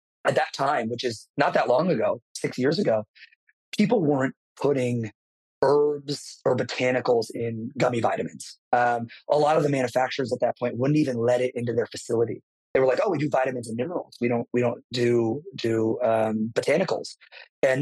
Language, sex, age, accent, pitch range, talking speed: English, male, 30-49, American, 120-135 Hz, 185 wpm